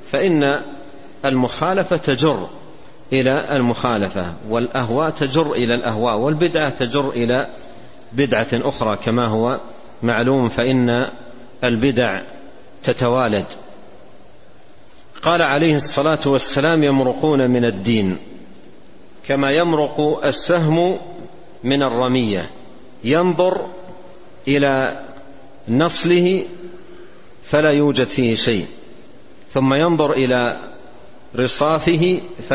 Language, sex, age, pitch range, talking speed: Arabic, male, 50-69, 120-155 Hz, 80 wpm